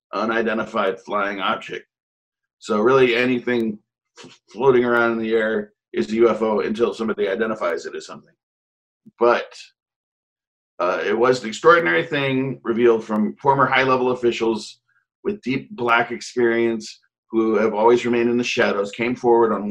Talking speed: 140 wpm